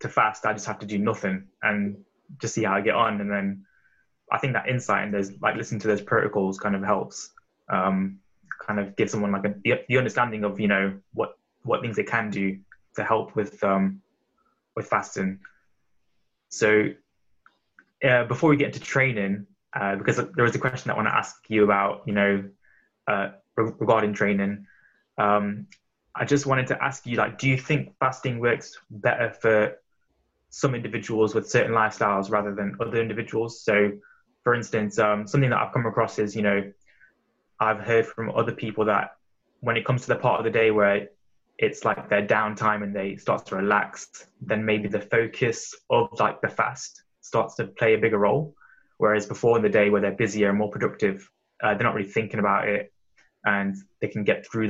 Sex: male